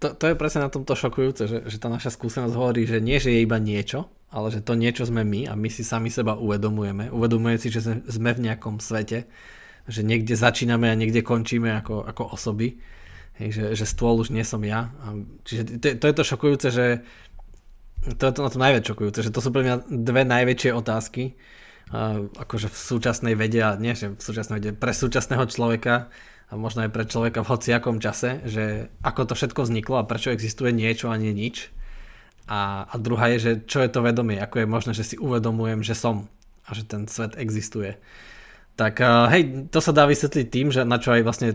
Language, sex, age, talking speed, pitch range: Slovak, male, 20-39, 210 wpm, 110-125 Hz